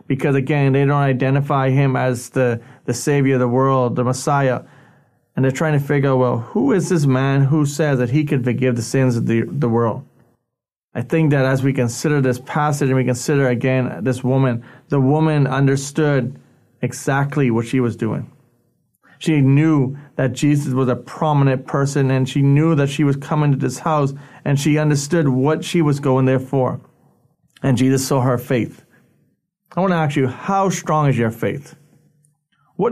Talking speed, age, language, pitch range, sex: 190 wpm, 30-49, English, 130-155 Hz, male